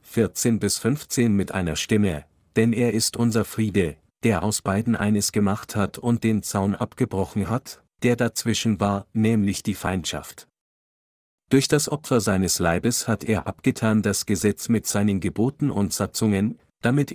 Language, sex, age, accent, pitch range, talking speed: German, male, 50-69, German, 100-120 Hz, 155 wpm